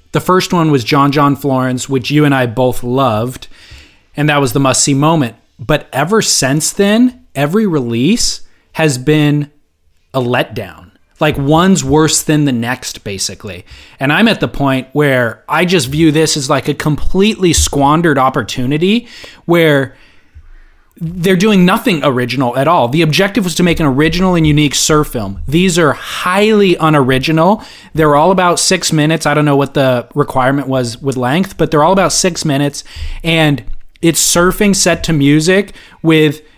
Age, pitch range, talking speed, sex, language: 20-39, 135-165 Hz, 165 wpm, male, English